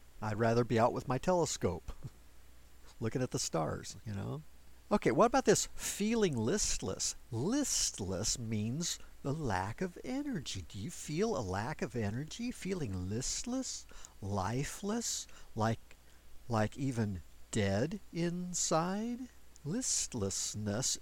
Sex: male